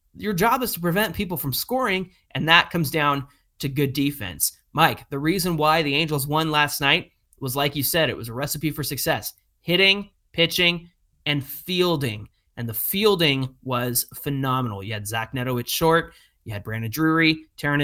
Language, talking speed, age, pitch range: English, 180 wpm, 20-39, 130-175 Hz